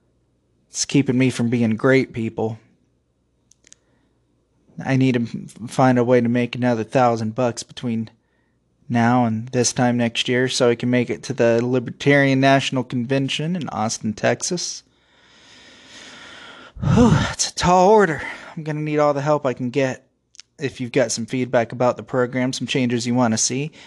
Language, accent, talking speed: English, American, 170 wpm